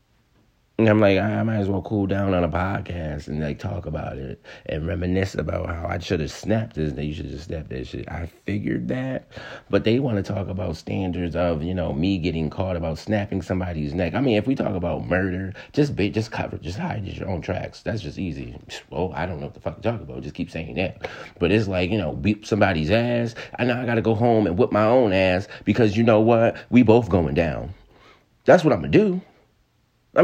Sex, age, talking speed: male, 30-49, 240 wpm